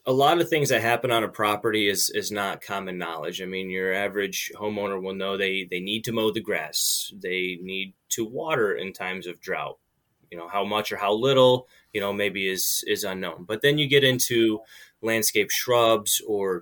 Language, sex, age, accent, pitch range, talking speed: English, male, 20-39, American, 100-120 Hz, 205 wpm